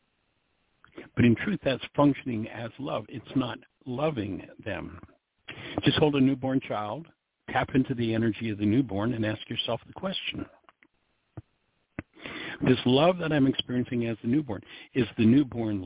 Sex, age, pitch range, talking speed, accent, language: male, 60-79, 105-140 Hz, 150 wpm, American, English